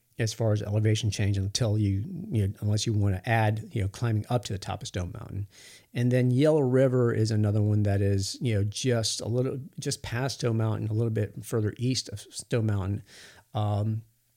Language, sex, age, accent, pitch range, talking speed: English, male, 50-69, American, 105-120 Hz, 215 wpm